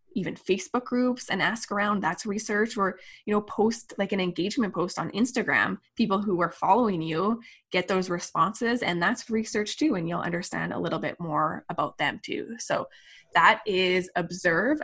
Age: 20-39